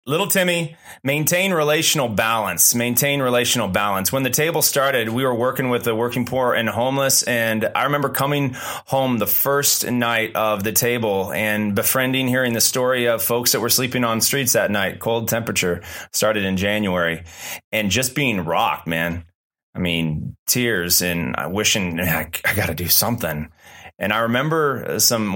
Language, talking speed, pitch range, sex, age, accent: English, 165 wpm, 95-120 Hz, male, 30-49, American